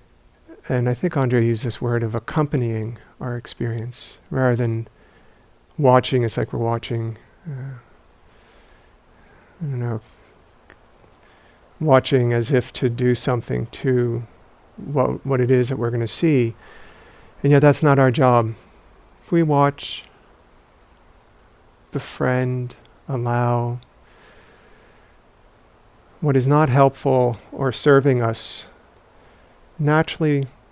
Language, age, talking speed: English, 50-69, 110 wpm